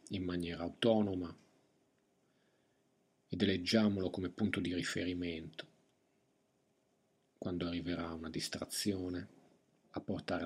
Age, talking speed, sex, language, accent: 50-69, 85 wpm, male, Italian, native